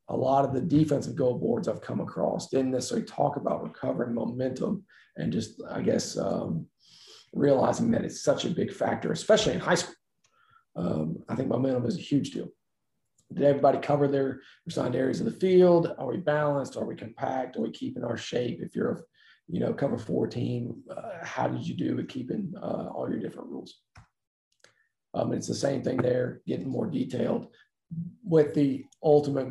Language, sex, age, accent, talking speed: English, male, 40-59, American, 185 wpm